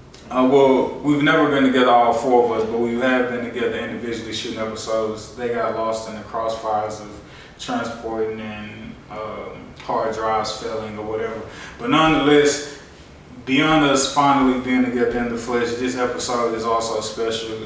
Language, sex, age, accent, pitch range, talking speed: English, male, 20-39, American, 115-130 Hz, 165 wpm